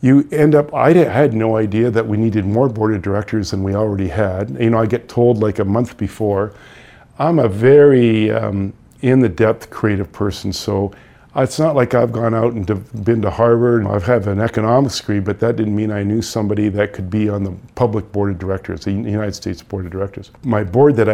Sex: male